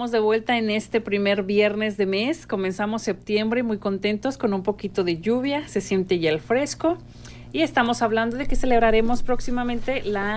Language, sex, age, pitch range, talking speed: English, female, 40-59, 185-245 Hz, 175 wpm